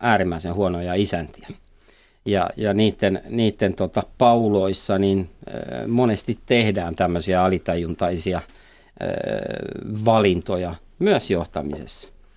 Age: 50-69